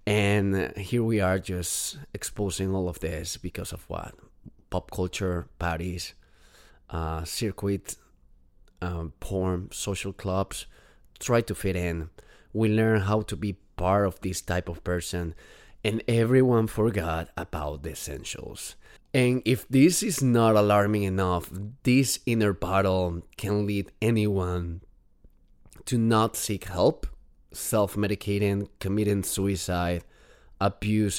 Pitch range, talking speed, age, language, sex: 90-105 Hz, 120 wpm, 30-49, English, male